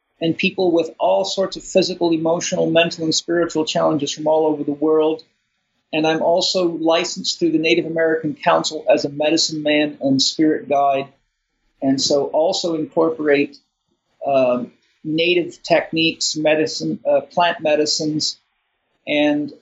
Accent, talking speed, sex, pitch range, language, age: American, 140 wpm, male, 145-180 Hz, English, 50-69